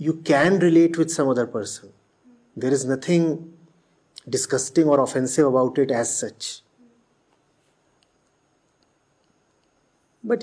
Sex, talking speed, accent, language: male, 105 wpm, Indian, English